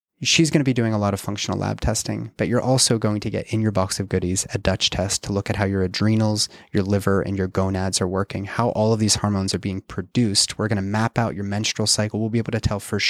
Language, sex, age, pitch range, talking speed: English, male, 30-49, 100-120 Hz, 275 wpm